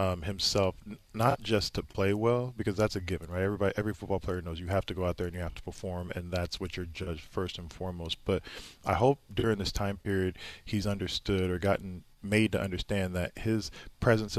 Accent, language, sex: American, English, male